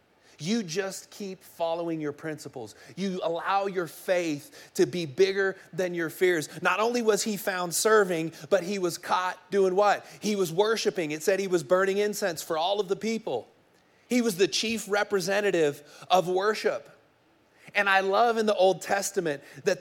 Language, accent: English, American